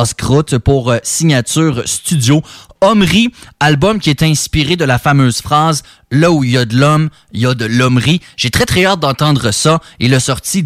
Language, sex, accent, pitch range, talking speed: English, male, Canadian, 125-170 Hz, 185 wpm